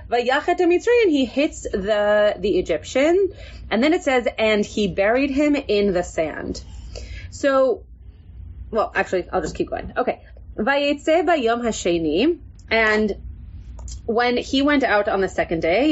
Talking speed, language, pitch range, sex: 135 wpm, English, 180-275 Hz, female